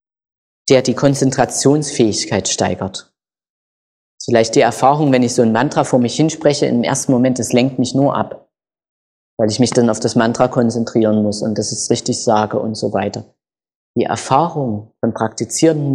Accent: German